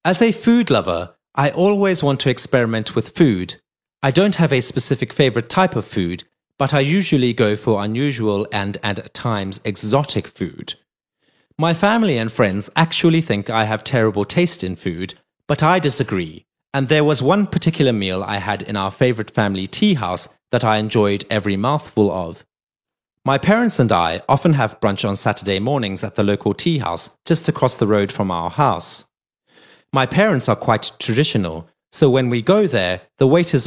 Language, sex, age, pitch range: Chinese, male, 30-49, 100-150 Hz